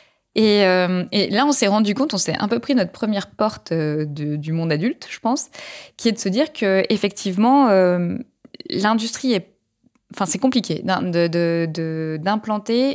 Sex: female